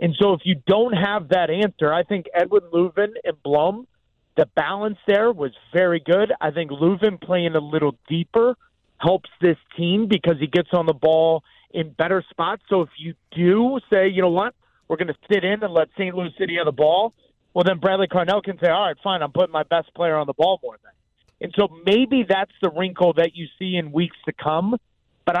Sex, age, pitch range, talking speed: male, 40-59, 155-190 Hz, 220 wpm